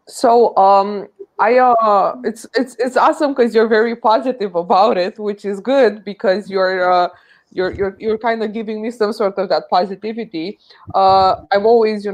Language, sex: English, female